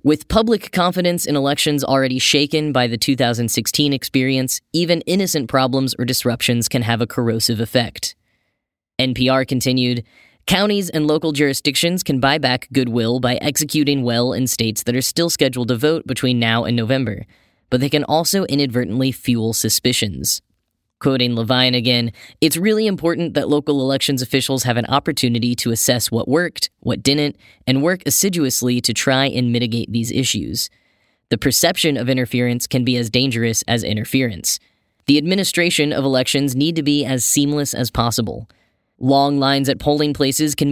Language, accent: English, American